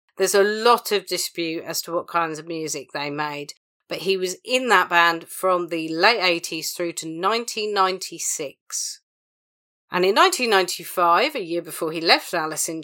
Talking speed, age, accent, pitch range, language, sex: 170 wpm, 40-59, British, 165-195 Hz, English, female